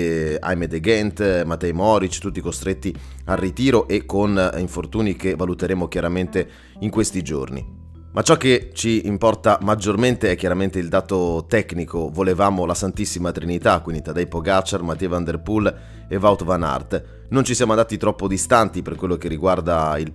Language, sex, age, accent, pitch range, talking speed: Italian, male, 30-49, native, 85-100 Hz, 165 wpm